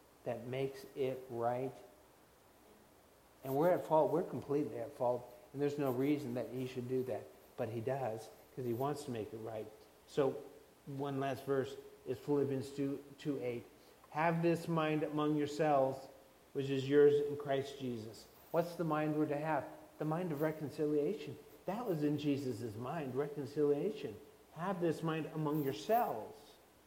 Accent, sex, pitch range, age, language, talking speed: American, male, 130-160 Hz, 50-69, English, 160 wpm